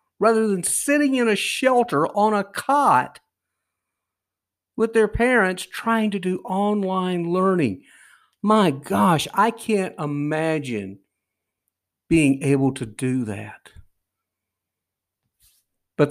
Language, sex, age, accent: English, male, 50-69, American